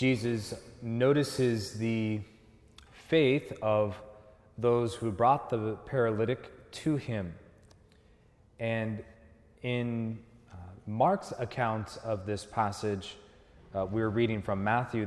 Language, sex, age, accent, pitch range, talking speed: English, male, 30-49, American, 105-120 Hz, 100 wpm